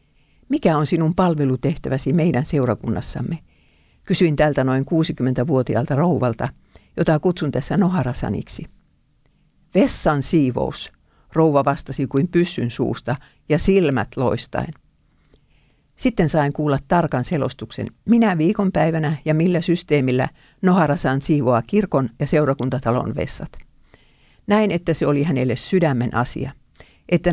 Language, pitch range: Finnish, 130-170 Hz